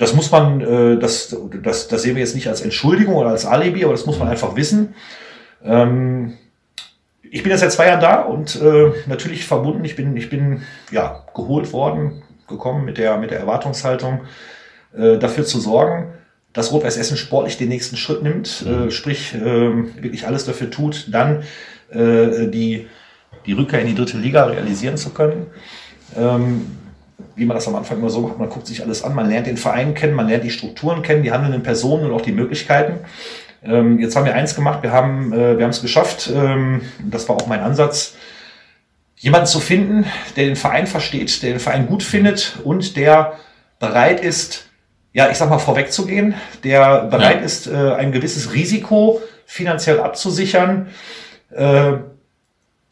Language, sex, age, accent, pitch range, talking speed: German, male, 40-59, German, 120-155 Hz, 165 wpm